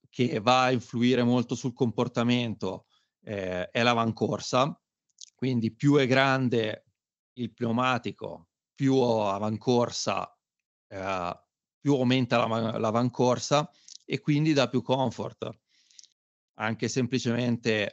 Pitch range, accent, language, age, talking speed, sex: 110-125 Hz, native, Italian, 30-49, 95 wpm, male